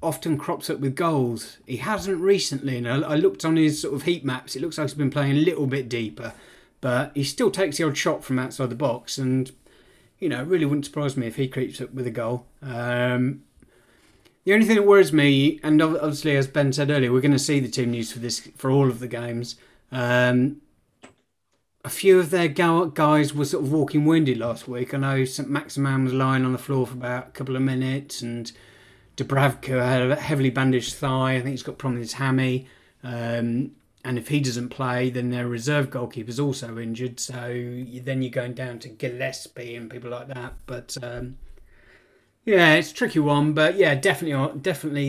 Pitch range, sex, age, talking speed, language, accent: 120-145 Hz, male, 30-49, 210 wpm, English, British